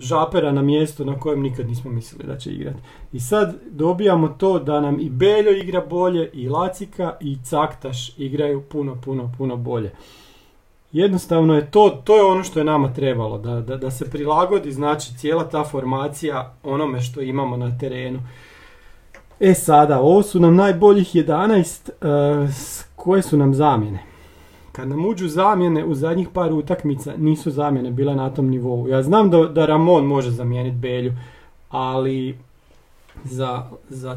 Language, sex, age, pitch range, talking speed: Croatian, male, 40-59, 130-170 Hz, 160 wpm